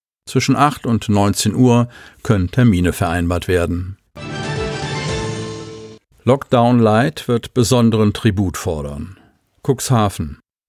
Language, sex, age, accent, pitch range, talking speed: German, male, 50-69, German, 100-120 Hz, 90 wpm